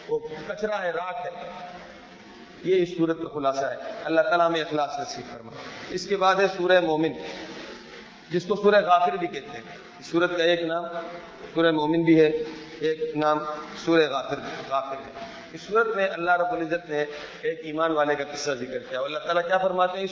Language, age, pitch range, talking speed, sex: Urdu, 40-59, 165-210 Hz, 190 wpm, male